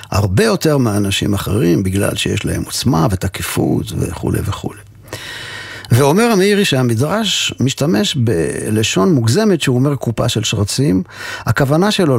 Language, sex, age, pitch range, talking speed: Hebrew, male, 50-69, 105-145 Hz, 120 wpm